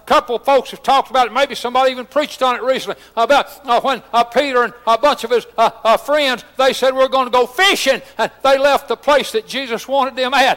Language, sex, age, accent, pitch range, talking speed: English, male, 60-79, American, 260-300 Hz, 250 wpm